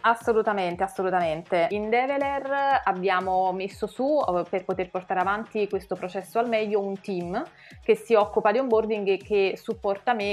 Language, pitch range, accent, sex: Italian, 185-225 Hz, native, female